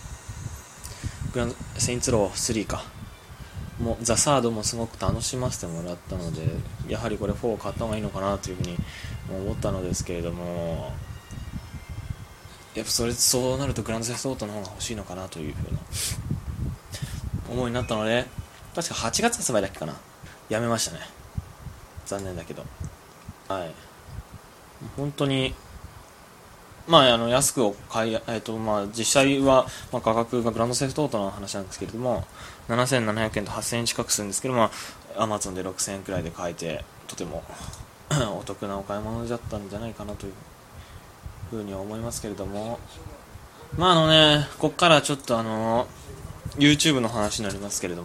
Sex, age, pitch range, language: male, 20-39, 95-125 Hz, Japanese